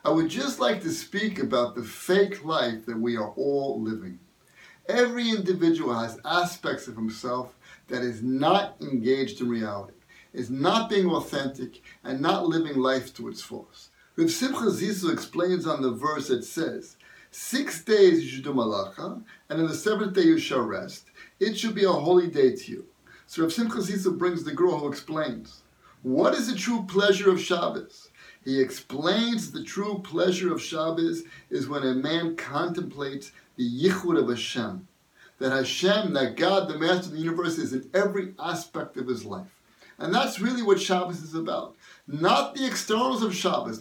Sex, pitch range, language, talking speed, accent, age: male, 145-205 Hz, English, 175 wpm, American, 50-69